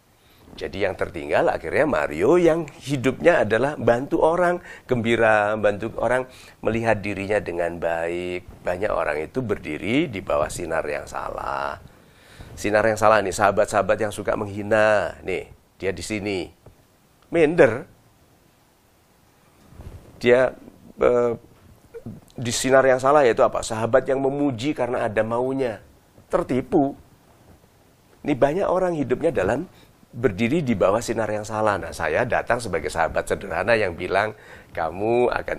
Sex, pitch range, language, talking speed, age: male, 100-130 Hz, English, 125 wpm, 40-59